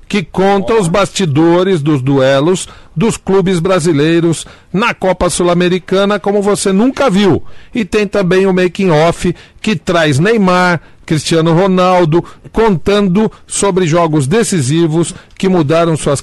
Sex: male